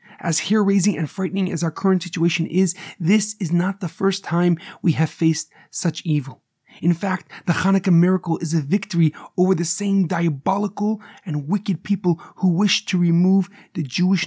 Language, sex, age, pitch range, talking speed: English, male, 30-49, 165-195 Hz, 175 wpm